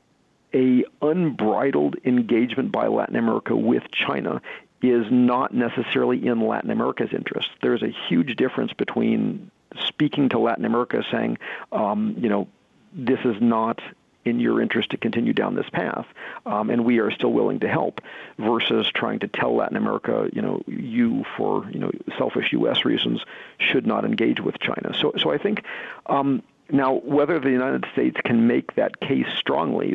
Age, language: 50-69, English